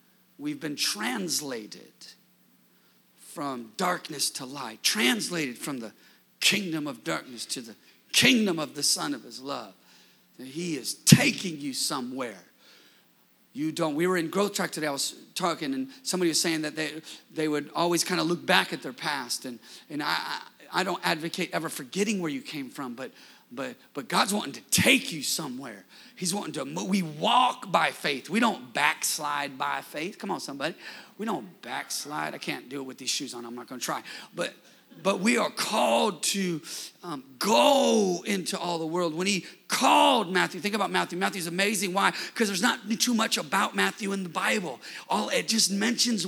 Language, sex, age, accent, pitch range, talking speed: English, male, 40-59, American, 170-225 Hz, 185 wpm